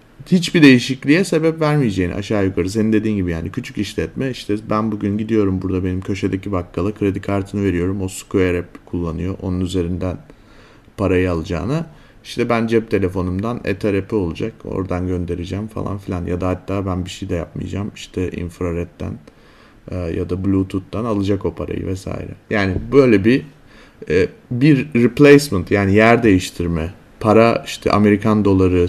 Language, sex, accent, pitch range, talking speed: Turkish, male, native, 90-110 Hz, 145 wpm